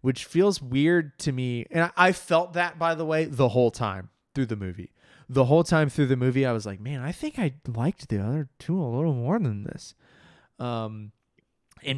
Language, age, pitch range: English, 20-39, 100-135 Hz